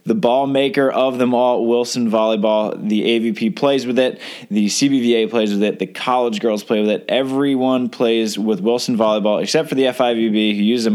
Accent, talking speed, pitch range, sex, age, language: American, 195 wpm, 110-130 Hz, male, 20-39, English